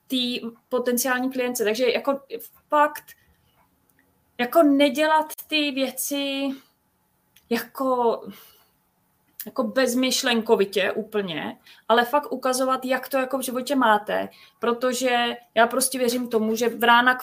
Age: 20-39